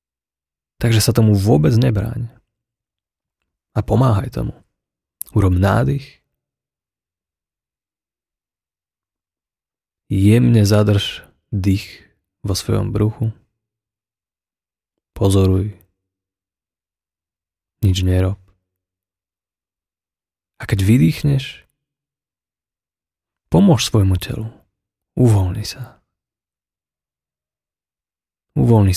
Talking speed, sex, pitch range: 60 wpm, male, 90-110 Hz